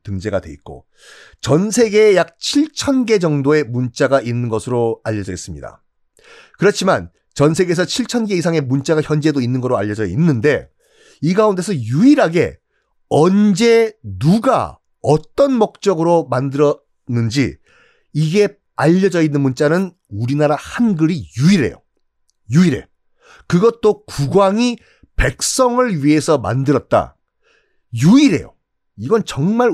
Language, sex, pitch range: Korean, male, 130-210 Hz